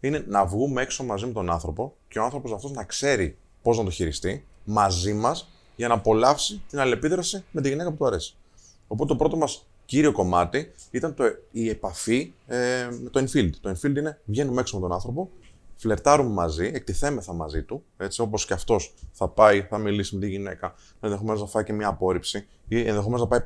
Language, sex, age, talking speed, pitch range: Greek, male, 20-39, 200 wpm, 90-130 Hz